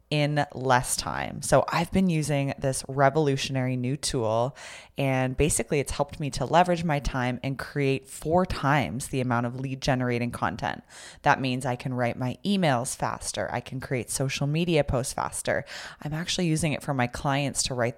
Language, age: English, 20-39